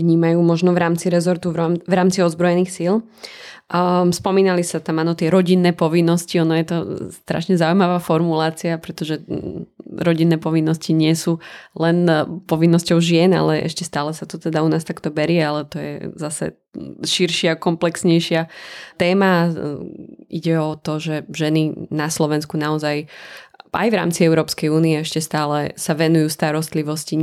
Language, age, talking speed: Slovak, 20-39, 145 wpm